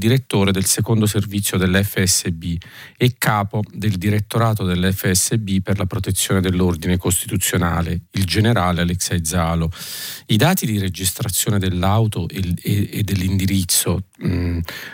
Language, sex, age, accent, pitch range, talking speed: Italian, male, 40-59, native, 95-115 Hz, 110 wpm